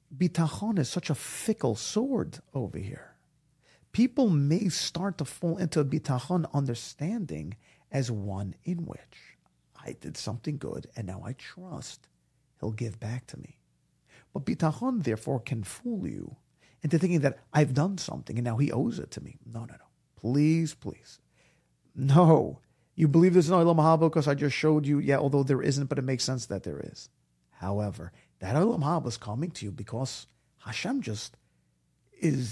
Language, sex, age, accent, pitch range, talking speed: English, male, 40-59, American, 115-165 Hz, 165 wpm